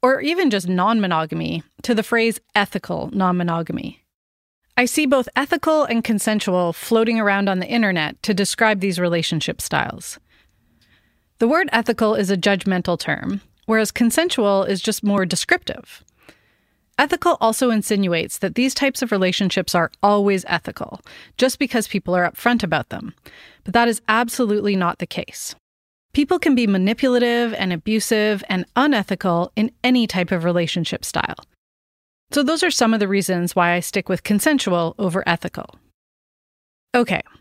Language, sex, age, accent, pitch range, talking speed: English, female, 30-49, American, 185-245 Hz, 150 wpm